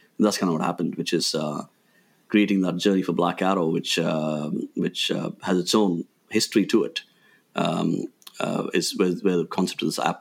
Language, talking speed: English, 200 wpm